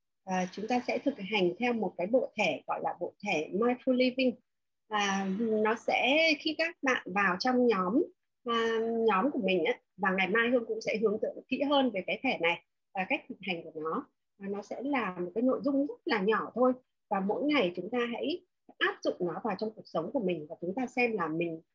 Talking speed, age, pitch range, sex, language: 230 wpm, 30-49, 185-255 Hz, female, Vietnamese